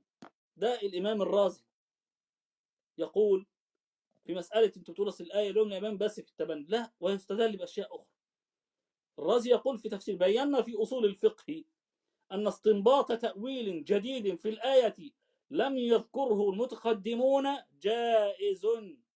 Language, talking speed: Arabic, 105 wpm